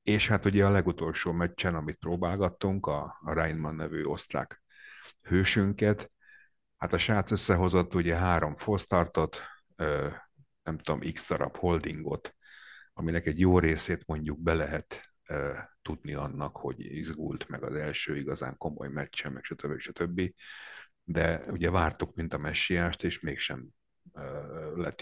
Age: 50-69